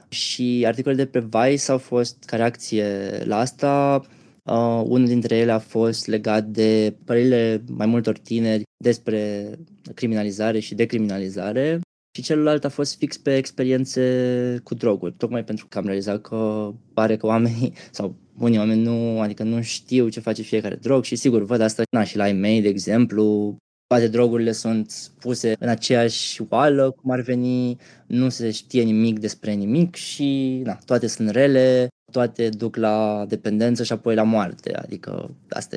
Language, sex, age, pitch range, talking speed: English, male, 20-39, 105-125 Hz, 165 wpm